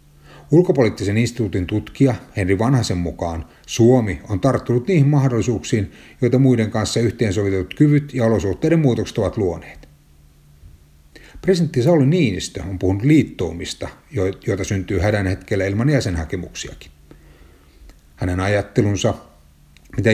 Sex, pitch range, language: male, 90-120 Hz, Finnish